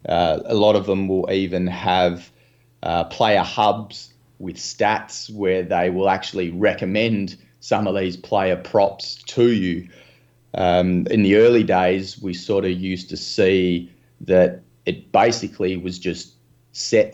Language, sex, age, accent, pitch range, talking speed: English, male, 20-39, Australian, 90-105 Hz, 145 wpm